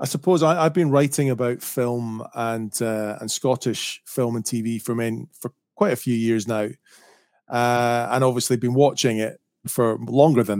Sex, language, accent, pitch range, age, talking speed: male, English, British, 110-135 Hz, 30-49, 180 wpm